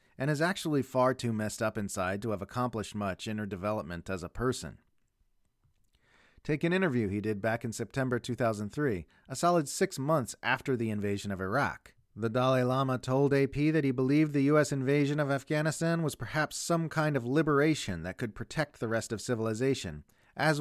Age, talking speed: 40-59, 185 wpm